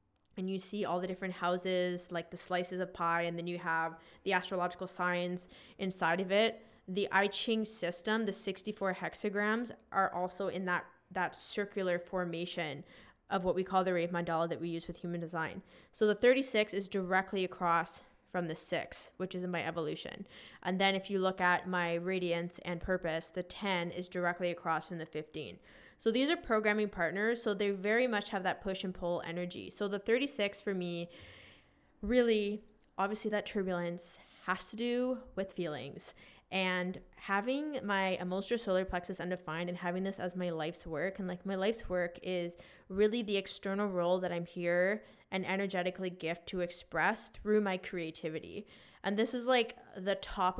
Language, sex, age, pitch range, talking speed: English, female, 20-39, 175-200 Hz, 180 wpm